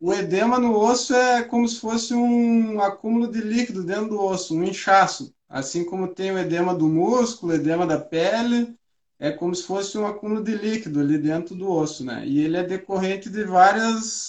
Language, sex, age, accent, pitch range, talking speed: Portuguese, male, 20-39, Brazilian, 165-215 Hz, 195 wpm